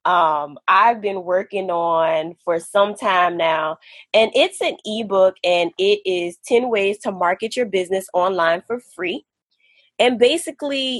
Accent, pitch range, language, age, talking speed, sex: American, 180-230 Hz, English, 20-39, 145 wpm, female